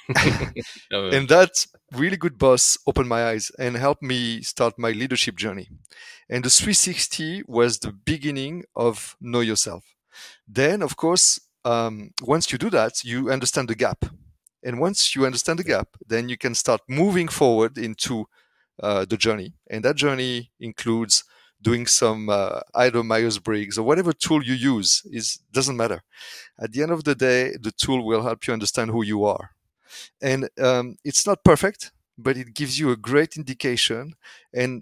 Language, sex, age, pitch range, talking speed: English, male, 30-49, 115-135 Hz, 165 wpm